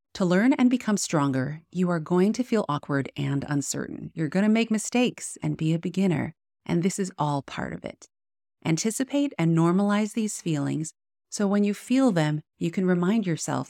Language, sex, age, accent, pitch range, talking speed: English, female, 30-49, American, 145-205 Hz, 185 wpm